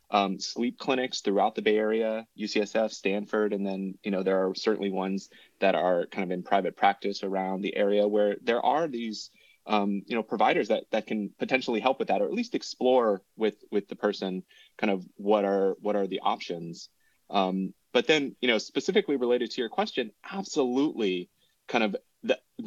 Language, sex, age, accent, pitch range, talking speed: English, male, 30-49, American, 100-120 Hz, 190 wpm